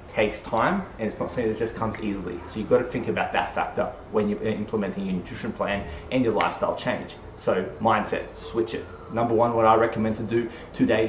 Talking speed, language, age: 215 wpm, English, 20-39